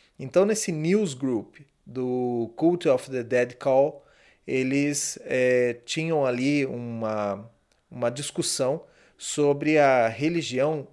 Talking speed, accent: 105 wpm, Brazilian